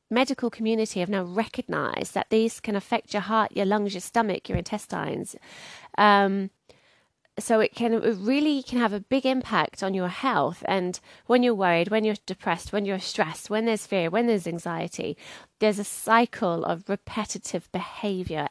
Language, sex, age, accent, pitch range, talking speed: English, female, 20-39, British, 175-220 Hz, 170 wpm